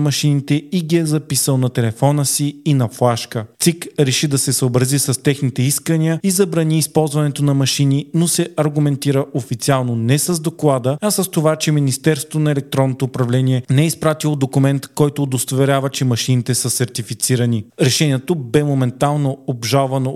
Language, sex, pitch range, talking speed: Bulgarian, male, 130-155 Hz, 160 wpm